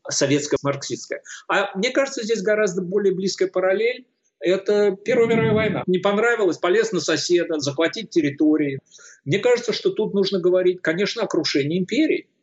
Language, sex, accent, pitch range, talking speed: Russian, male, native, 150-235 Hz, 145 wpm